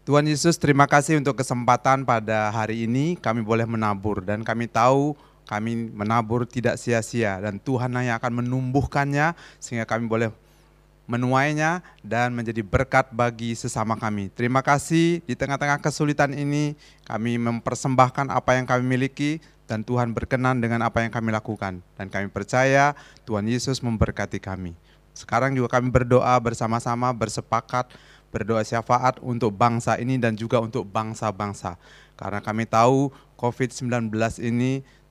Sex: male